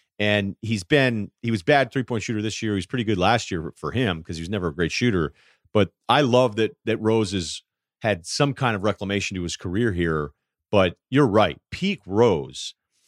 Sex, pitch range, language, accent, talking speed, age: male, 100-135 Hz, English, American, 220 wpm, 40-59